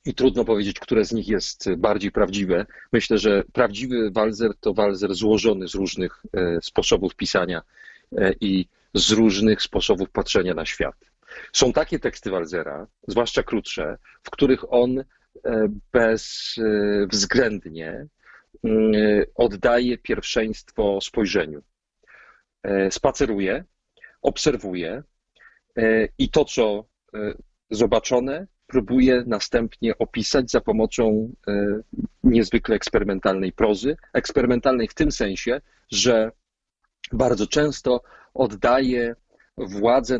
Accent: native